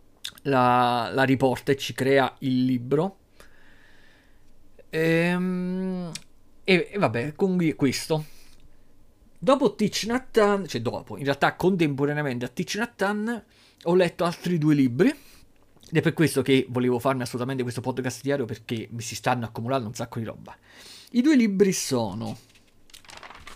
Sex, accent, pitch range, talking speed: male, native, 125-180 Hz, 140 wpm